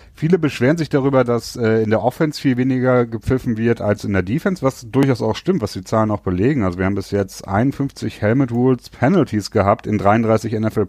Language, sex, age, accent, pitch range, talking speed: German, male, 30-49, German, 95-120 Hz, 210 wpm